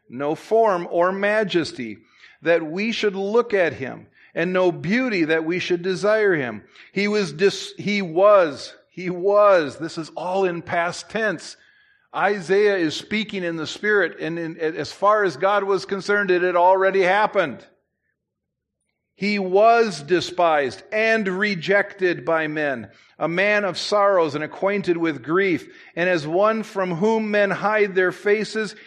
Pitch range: 180-230 Hz